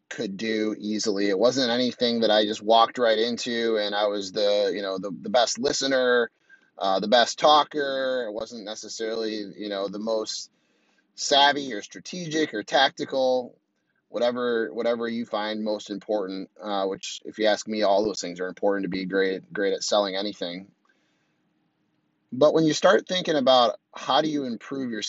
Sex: male